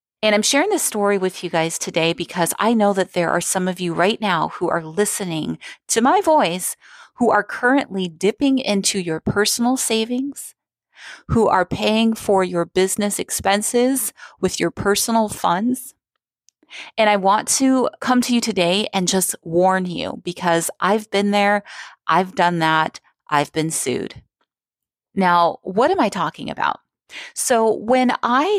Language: English